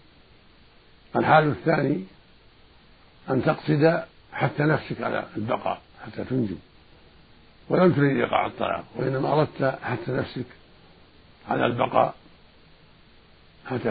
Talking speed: 90 wpm